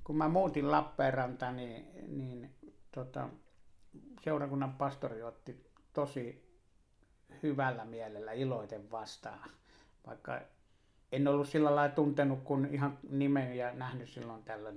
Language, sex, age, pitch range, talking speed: Finnish, male, 60-79, 115-155 Hz, 115 wpm